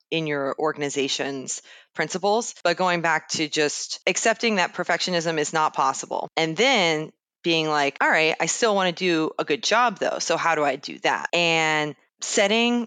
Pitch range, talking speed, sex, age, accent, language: 150-175 Hz, 175 wpm, female, 20-39, American, English